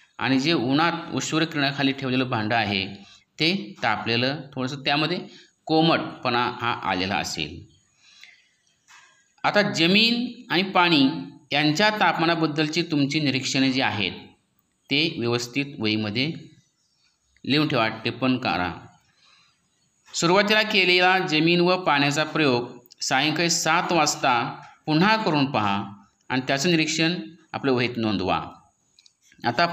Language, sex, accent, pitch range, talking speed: Marathi, male, native, 130-170 Hz, 105 wpm